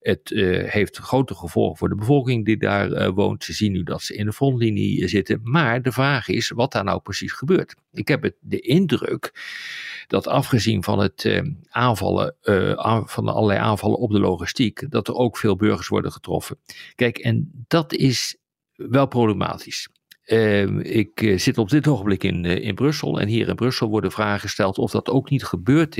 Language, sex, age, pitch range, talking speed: Dutch, male, 50-69, 105-135 Hz, 200 wpm